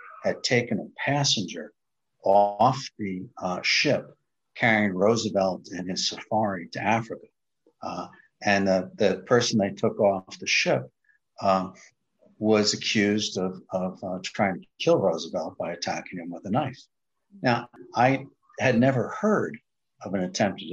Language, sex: English, male